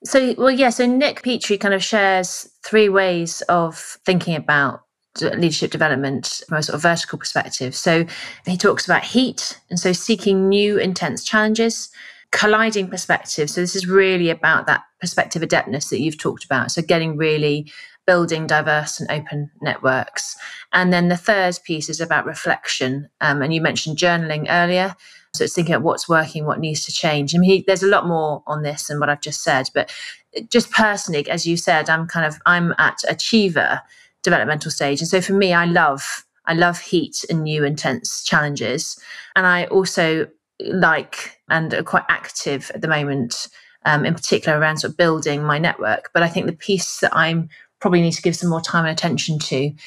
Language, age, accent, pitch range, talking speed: English, 30-49, British, 150-185 Hz, 190 wpm